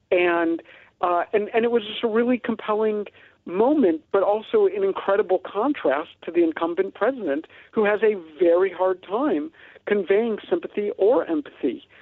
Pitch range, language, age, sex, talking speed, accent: 160-225 Hz, English, 50-69, male, 150 wpm, American